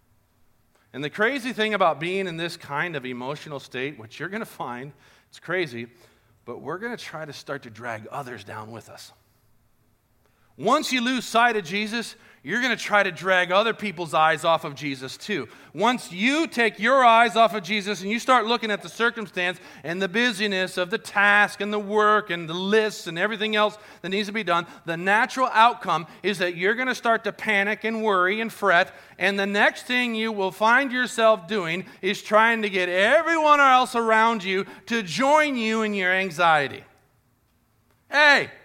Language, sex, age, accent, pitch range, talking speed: English, male, 40-59, American, 145-235 Hz, 195 wpm